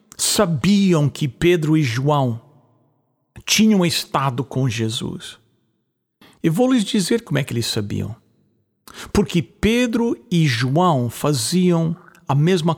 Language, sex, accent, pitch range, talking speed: English, male, Brazilian, 140-200 Hz, 115 wpm